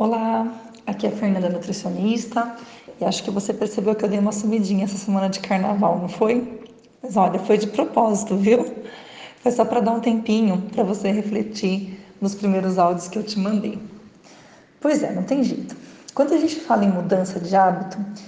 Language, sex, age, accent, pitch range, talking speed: Portuguese, female, 20-39, Brazilian, 195-230 Hz, 185 wpm